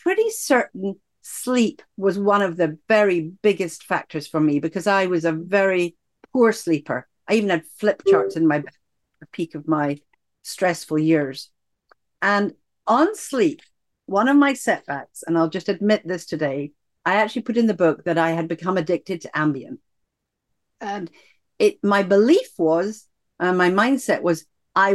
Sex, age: female, 50-69